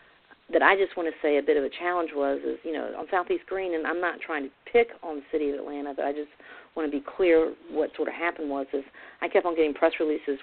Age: 40-59